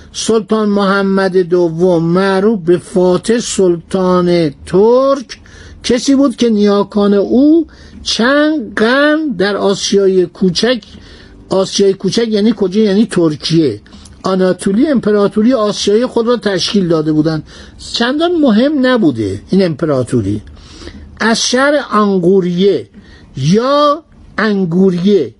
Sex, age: male, 60-79